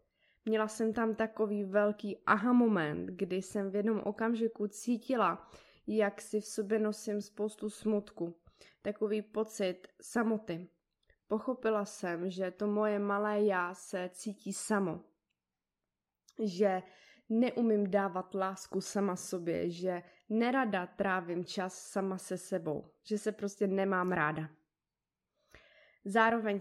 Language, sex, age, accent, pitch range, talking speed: Czech, female, 20-39, native, 185-215 Hz, 115 wpm